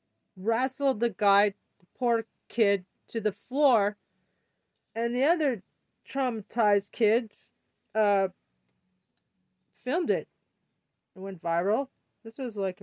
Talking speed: 110 wpm